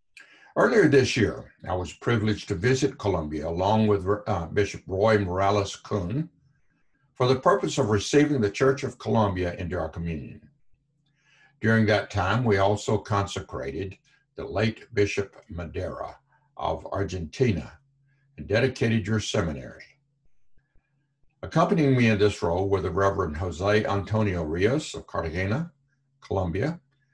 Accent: American